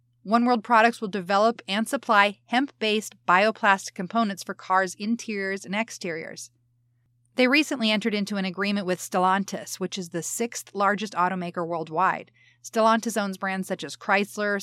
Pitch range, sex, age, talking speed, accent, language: 175-225 Hz, female, 30-49, 145 wpm, American, English